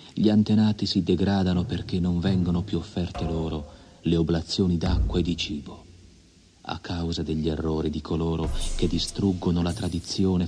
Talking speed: 150 wpm